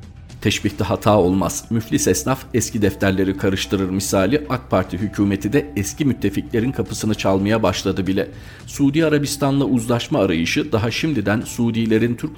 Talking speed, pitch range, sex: 130 wpm, 95-115 Hz, male